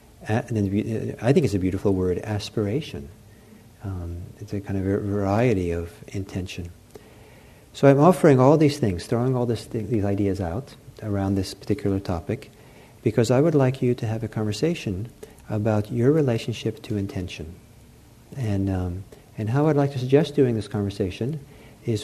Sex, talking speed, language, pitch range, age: male, 160 wpm, English, 105-140 Hz, 50-69